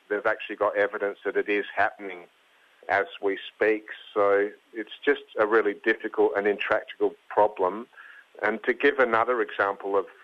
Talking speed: 150 wpm